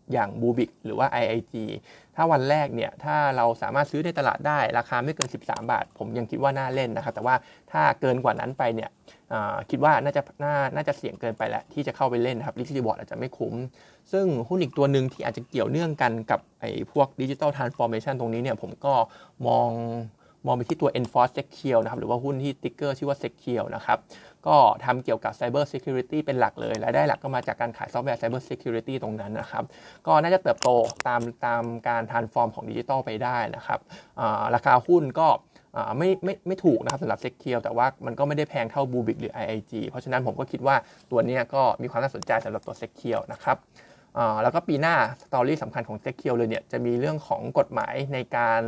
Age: 20-39